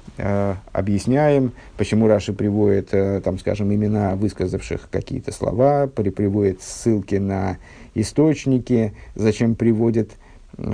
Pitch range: 100-125 Hz